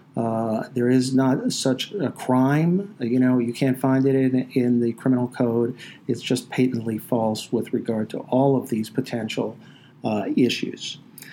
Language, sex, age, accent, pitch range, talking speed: English, male, 50-69, American, 120-130 Hz, 165 wpm